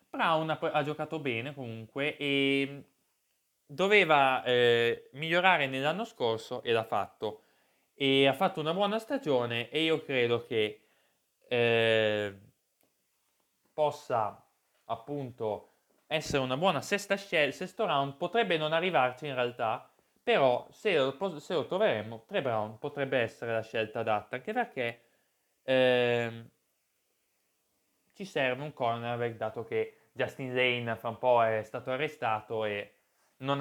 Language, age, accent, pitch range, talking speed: Italian, 20-39, native, 120-165 Hz, 130 wpm